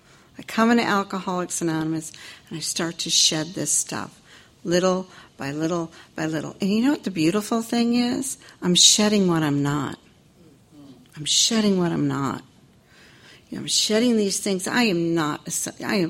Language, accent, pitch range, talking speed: English, American, 165-225 Hz, 170 wpm